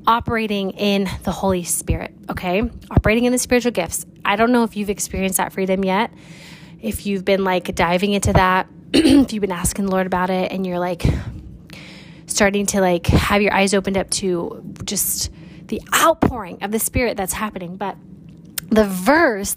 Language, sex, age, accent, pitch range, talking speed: English, female, 20-39, American, 180-220 Hz, 180 wpm